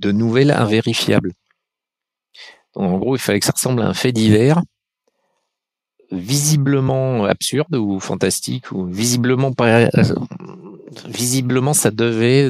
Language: French